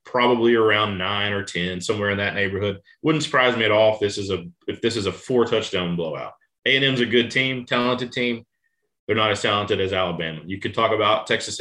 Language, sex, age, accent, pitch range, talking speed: English, male, 30-49, American, 105-130 Hz, 215 wpm